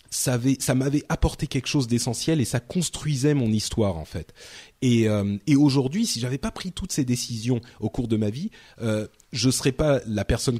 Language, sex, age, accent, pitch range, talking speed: French, male, 30-49, French, 110-145 Hz, 215 wpm